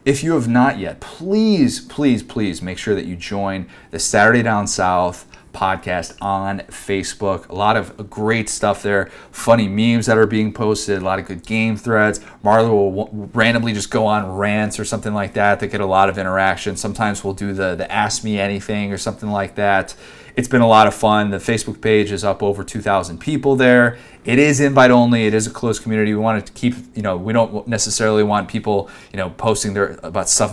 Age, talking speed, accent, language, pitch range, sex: 30-49, 215 wpm, American, English, 95-110 Hz, male